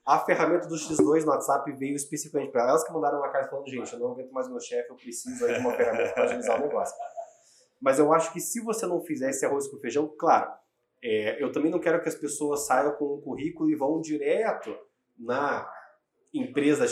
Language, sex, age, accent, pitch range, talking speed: Portuguese, male, 20-39, Brazilian, 140-210 Hz, 220 wpm